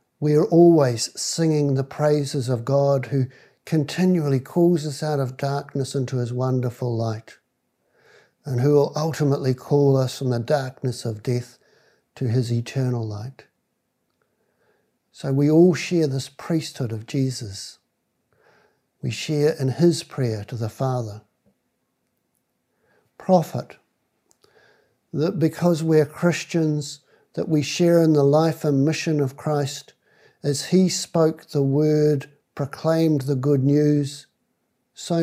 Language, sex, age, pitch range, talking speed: English, male, 60-79, 130-155 Hz, 130 wpm